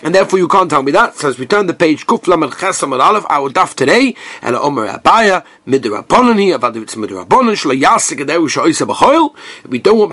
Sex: male